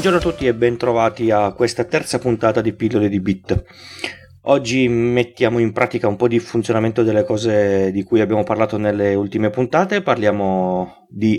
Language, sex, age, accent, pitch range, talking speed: Italian, male, 30-49, native, 100-120 Hz, 170 wpm